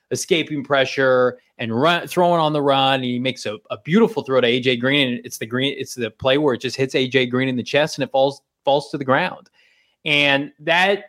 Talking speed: 225 wpm